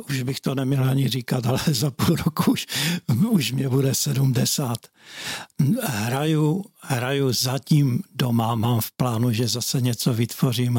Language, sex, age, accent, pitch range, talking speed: Czech, male, 60-79, native, 120-135 Hz, 145 wpm